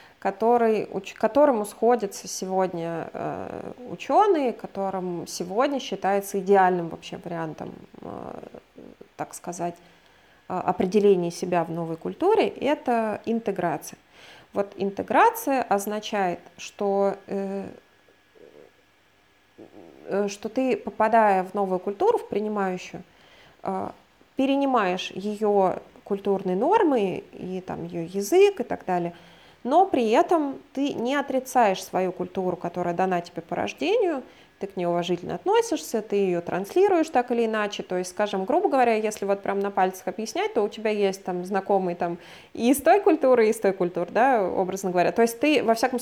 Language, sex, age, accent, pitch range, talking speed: Russian, female, 20-39, native, 185-240 Hz, 130 wpm